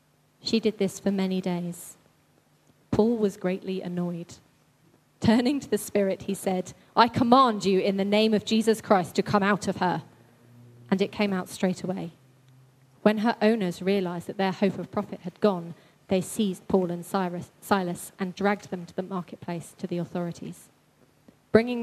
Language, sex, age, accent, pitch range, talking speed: English, female, 30-49, British, 180-205 Hz, 170 wpm